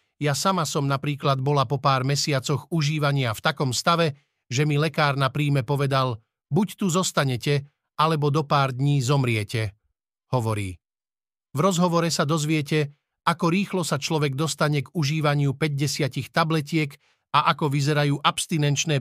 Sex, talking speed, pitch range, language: male, 140 wpm, 135-160 Hz, Slovak